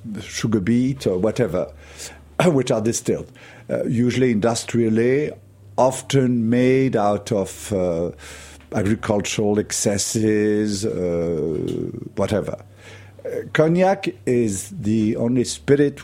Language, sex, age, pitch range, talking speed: English, male, 50-69, 100-125 Hz, 95 wpm